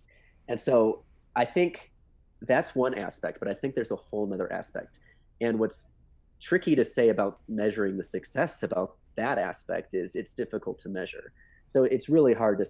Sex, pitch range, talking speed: male, 95-110 Hz, 175 wpm